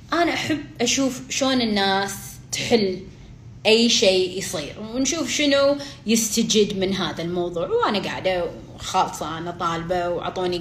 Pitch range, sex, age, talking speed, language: 190-275 Hz, female, 20-39, 120 wpm, Arabic